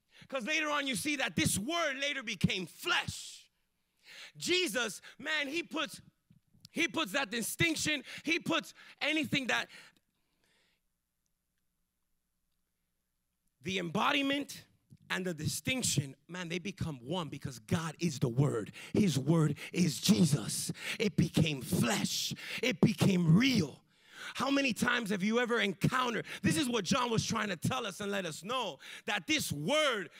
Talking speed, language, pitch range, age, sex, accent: 140 wpm, English, 160-265 Hz, 30-49, male, American